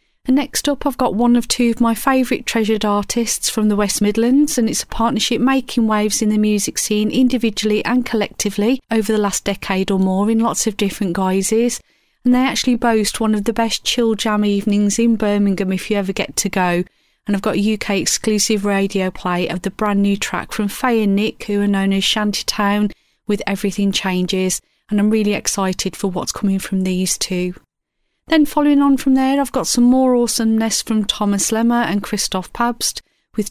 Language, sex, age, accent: English, female, 30-49, British